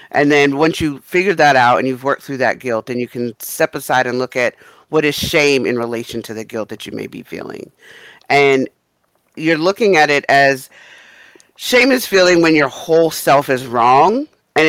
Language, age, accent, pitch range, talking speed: English, 50-69, American, 125-150 Hz, 205 wpm